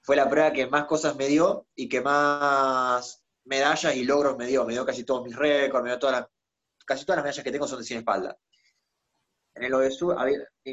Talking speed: 230 wpm